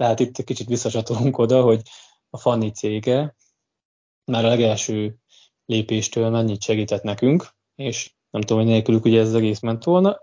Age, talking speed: 20-39, 160 wpm